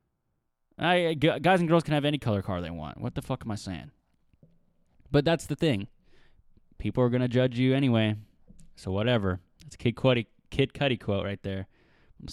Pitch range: 100-130 Hz